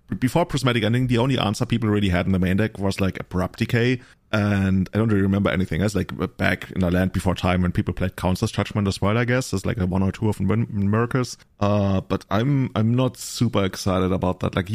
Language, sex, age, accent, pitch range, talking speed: English, male, 30-49, German, 95-115 Hz, 235 wpm